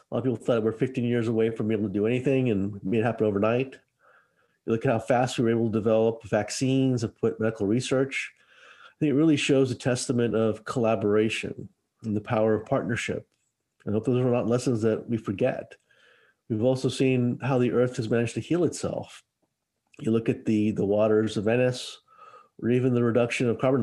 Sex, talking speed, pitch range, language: male, 210 wpm, 110-130 Hz, English